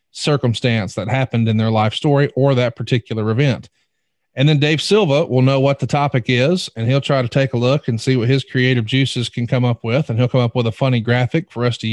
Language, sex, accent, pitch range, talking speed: English, male, American, 115-135 Hz, 245 wpm